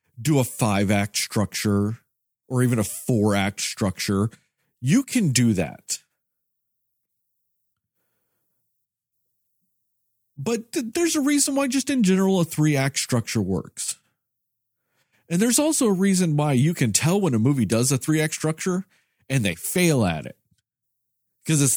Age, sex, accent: 40-59, male, American